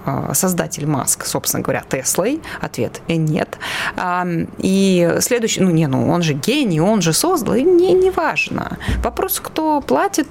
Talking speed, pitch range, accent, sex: 150 wpm, 175-225 Hz, native, female